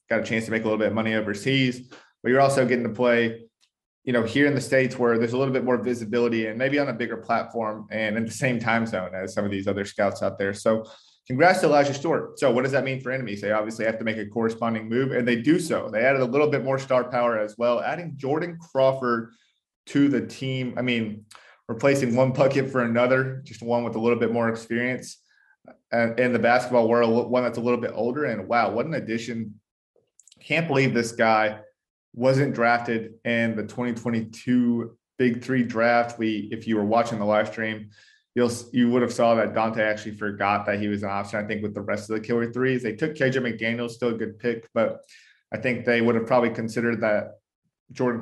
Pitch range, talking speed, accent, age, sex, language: 110-130 Hz, 225 wpm, American, 20-39, male, English